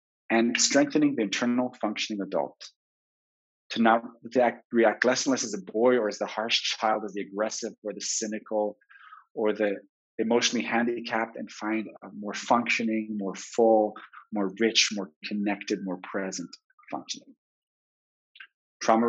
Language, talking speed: English, 145 wpm